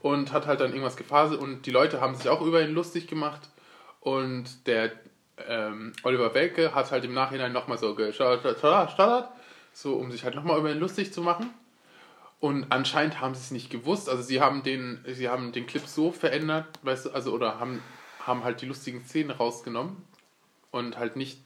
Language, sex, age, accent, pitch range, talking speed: German, male, 20-39, German, 120-150 Hz, 200 wpm